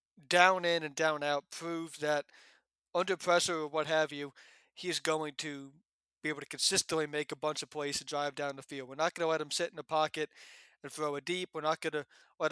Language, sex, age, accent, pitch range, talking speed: English, male, 20-39, American, 145-165 Hz, 235 wpm